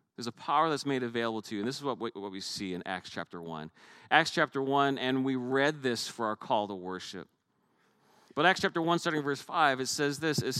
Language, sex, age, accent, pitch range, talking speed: English, male, 40-59, American, 145-195 Hz, 230 wpm